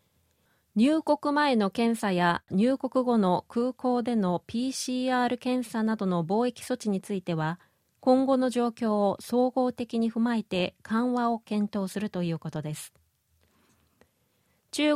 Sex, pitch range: female, 190-250 Hz